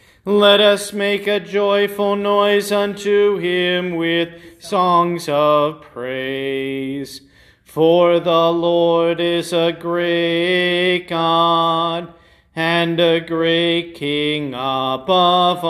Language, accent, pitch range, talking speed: English, American, 165-200 Hz, 90 wpm